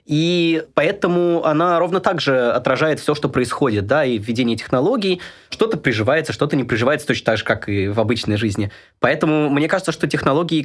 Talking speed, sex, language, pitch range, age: 180 wpm, male, Russian, 115-150 Hz, 20-39